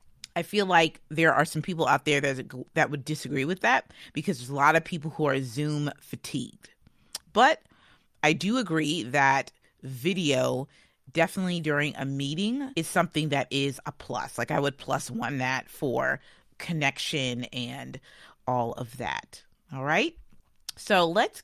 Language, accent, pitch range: English, American, 130-170 Hz